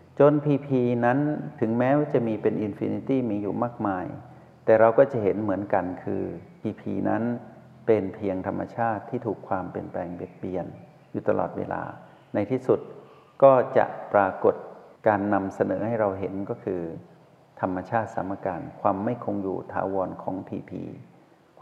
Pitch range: 100-125 Hz